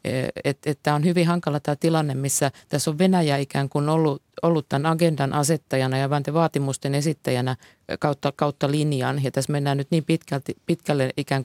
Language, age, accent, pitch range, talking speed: Finnish, 50-69, native, 135-165 Hz, 170 wpm